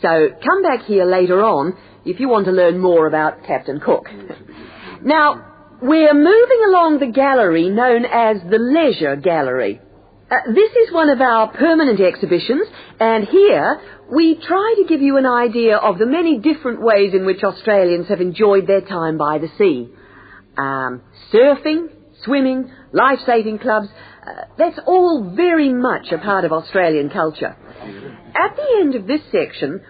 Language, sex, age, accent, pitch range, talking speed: English, female, 50-69, British, 180-300 Hz, 160 wpm